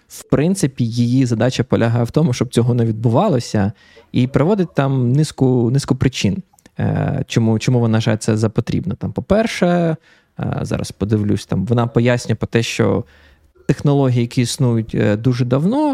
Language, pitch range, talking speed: Ukrainian, 110-140 Hz, 145 wpm